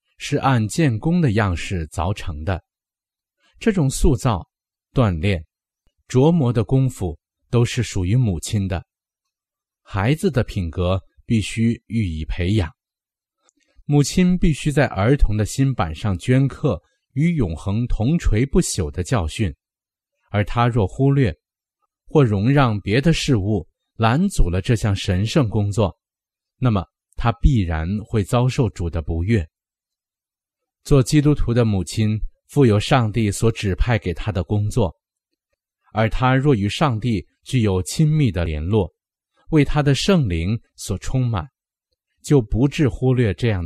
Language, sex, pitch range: Chinese, male, 95-135 Hz